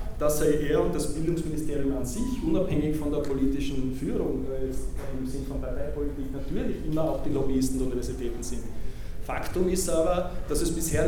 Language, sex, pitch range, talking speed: German, male, 135-170 Hz, 170 wpm